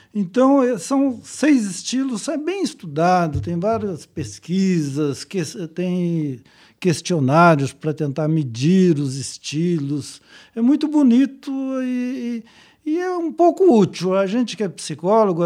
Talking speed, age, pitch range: 130 wpm, 60-79, 165-225 Hz